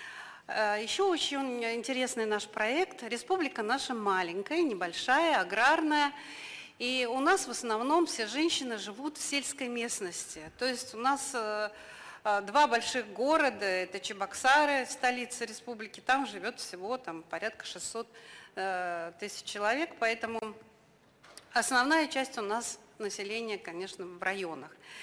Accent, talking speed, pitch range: native, 115 wpm, 205-265 Hz